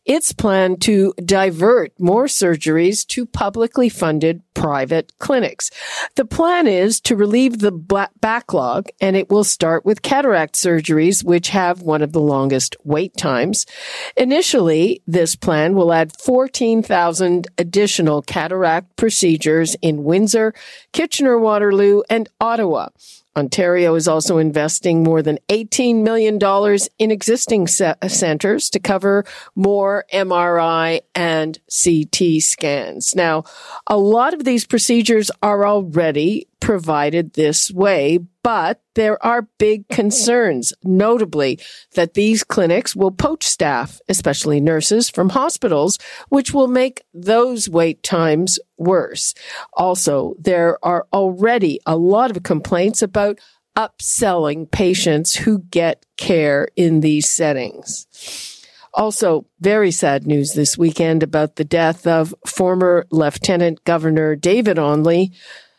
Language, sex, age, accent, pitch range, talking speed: English, female, 50-69, American, 165-215 Hz, 120 wpm